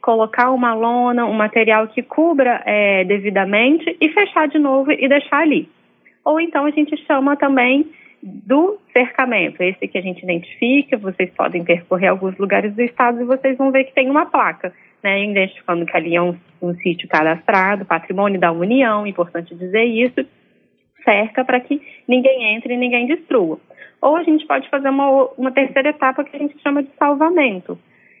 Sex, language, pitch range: female, Portuguese, 190-270 Hz